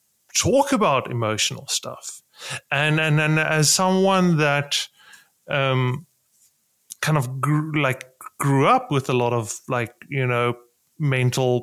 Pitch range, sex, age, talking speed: 140-190 Hz, male, 30-49, 130 wpm